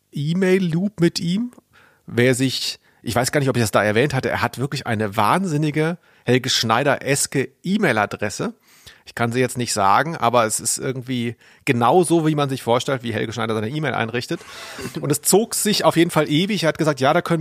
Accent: German